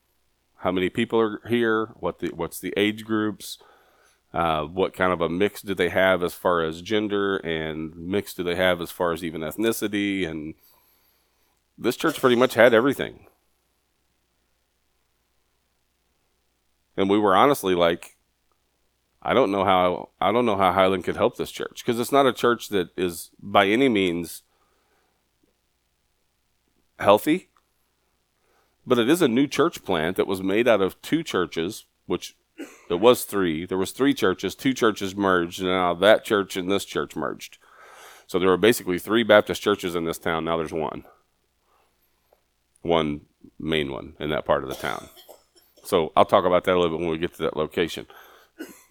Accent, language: American, English